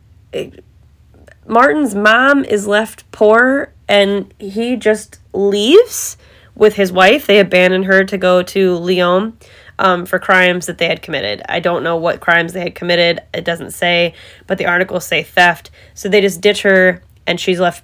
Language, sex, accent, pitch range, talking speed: English, female, American, 170-210 Hz, 170 wpm